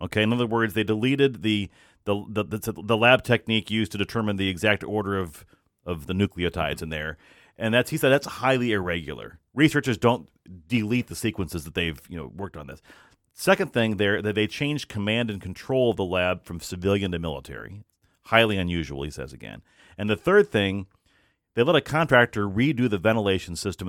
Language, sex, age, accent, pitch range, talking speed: English, male, 40-59, American, 90-125 Hz, 190 wpm